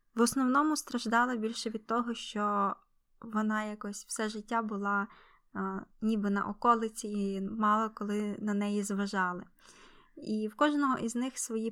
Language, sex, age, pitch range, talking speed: Ukrainian, female, 20-39, 205-245 Hz, 140 wpm